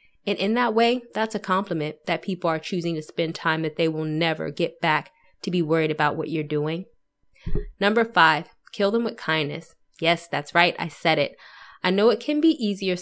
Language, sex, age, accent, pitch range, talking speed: English, female, 20-39, American, 160-195 Hz, 210 wpm